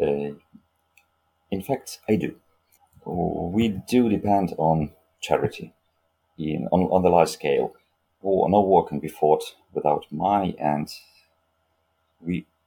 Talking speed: 125 wpm